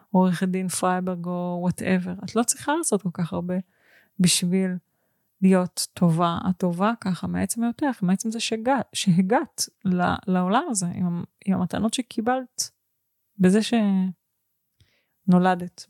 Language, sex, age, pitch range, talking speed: Hebrew, female, 30-49, 180-225 Hz, 120 wpm